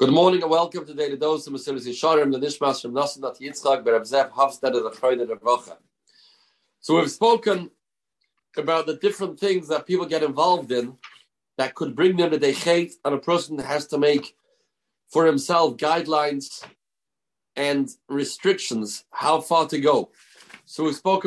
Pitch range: 145-180 Hz